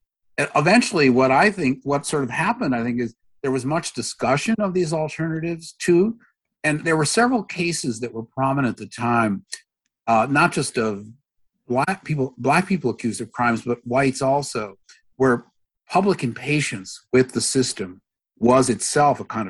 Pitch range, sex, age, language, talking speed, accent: 120-145 Hz, male, 50-69, English, 165 wpm, American